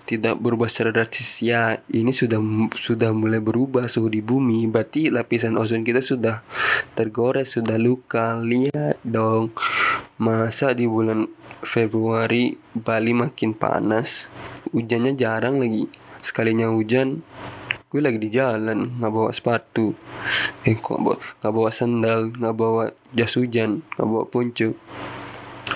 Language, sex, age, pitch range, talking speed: Indonesian, male, 20-39, 110-125 Hz, 130 wpm